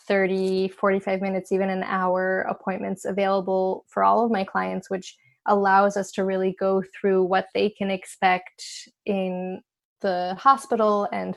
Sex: female